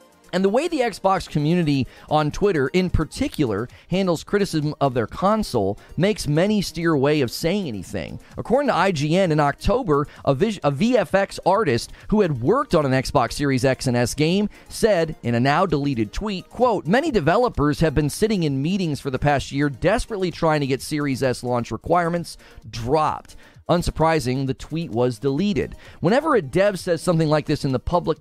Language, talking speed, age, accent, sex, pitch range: English, 175 wpm, 30-49, American, male, 140-185 Hz